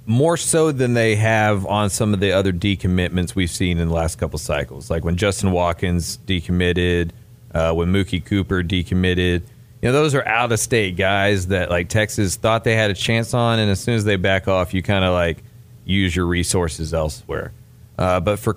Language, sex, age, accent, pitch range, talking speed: English, male, 30-49, American, 90-115 Hz, 205 wpm